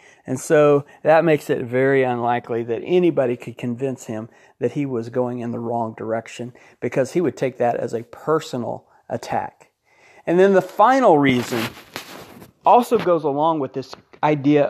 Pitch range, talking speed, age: 120-160 Hz, 165 wpm, 40-59